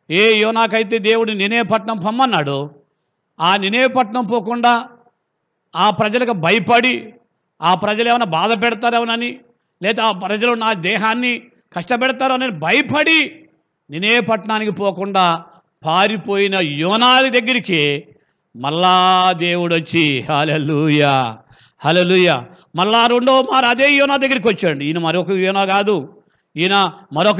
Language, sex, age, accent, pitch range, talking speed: Telugu, male, 50-69, native, 150-225 Hz, 105 wpm